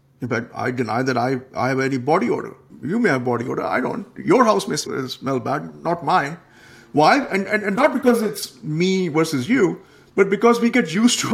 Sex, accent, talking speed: male, Indian, 215 wpm